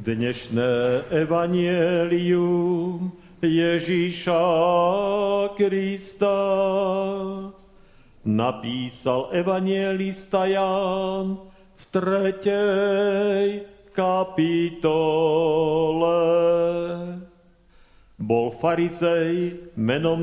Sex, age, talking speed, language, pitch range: male, 40-59, 40 wpm, Slovak, 165-190 Hz